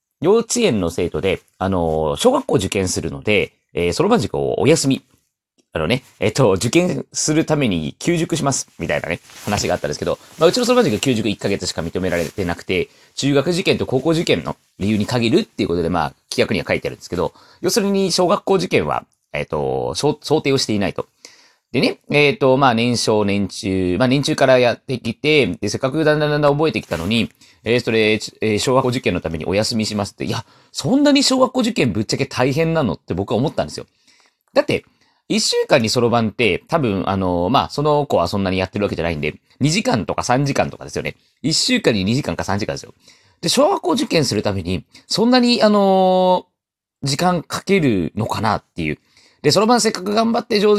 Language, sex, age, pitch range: Japanese, male, 40-59, 100-170 Hz